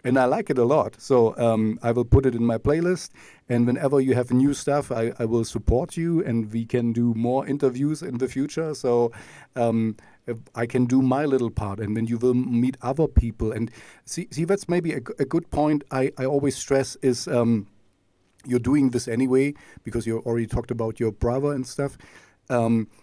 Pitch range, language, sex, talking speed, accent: 120-140 Hz, English, male, 205 wpm, German